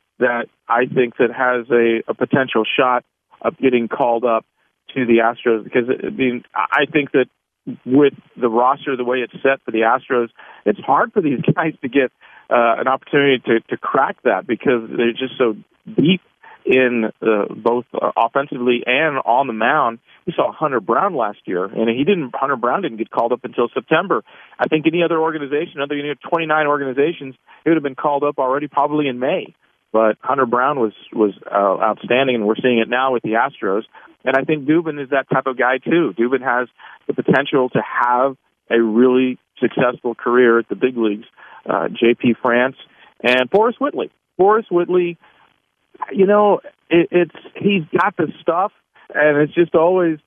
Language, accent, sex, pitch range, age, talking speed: English, American, male, 120-150 Hz, 40-59, 185 wpm